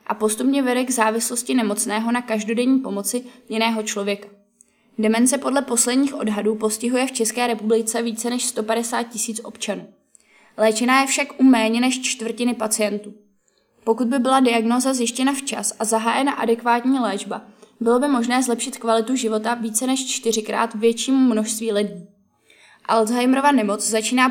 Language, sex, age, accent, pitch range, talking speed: Czech, female, 20-39, native, 215-245 Hz, 140 wpm